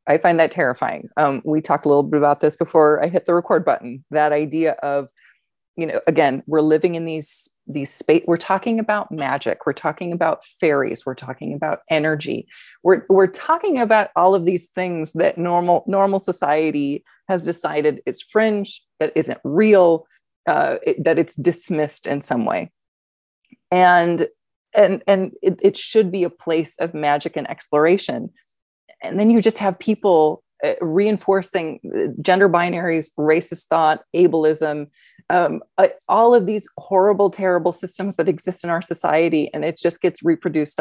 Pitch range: 155-195 Hz